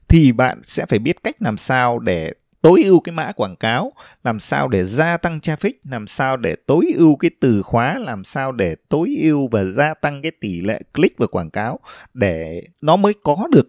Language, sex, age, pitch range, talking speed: Vietnamese, male, 20-39, 105-160 Hz, 215 wpm